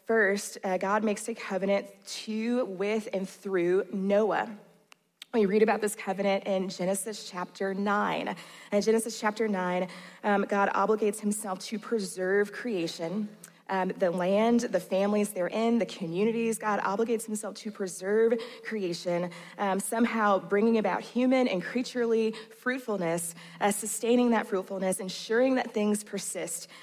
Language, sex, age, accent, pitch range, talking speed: English, female, 20-39, American, 190-220 Hz, 140 wpm